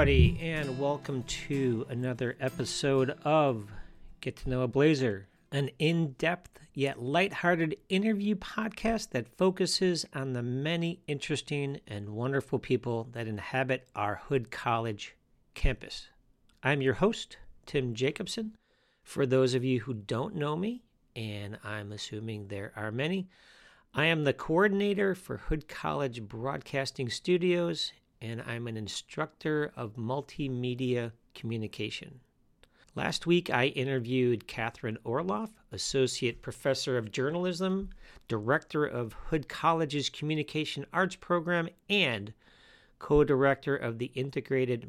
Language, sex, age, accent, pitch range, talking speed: English, male, 50-69, American, 115-155 Hz, 120 wpm